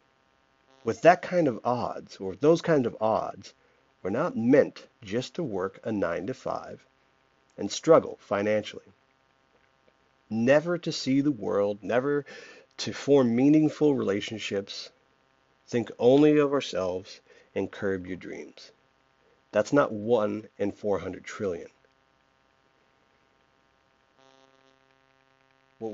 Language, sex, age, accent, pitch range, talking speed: English, male, 50-69, American, 100-135 Hz, 110 wpm